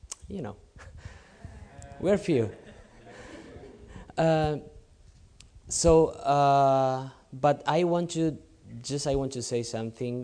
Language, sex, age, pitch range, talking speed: English, male, 20-39, 105-145 Hz, 100 wpm